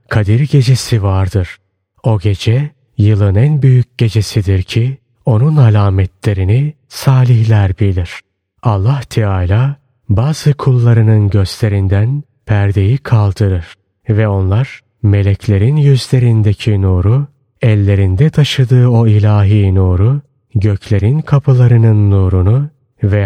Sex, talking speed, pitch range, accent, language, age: male, 90 wpm, 100-125 Hz, native, Turkish, 30-49